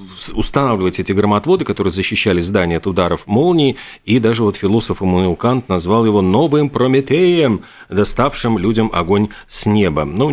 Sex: male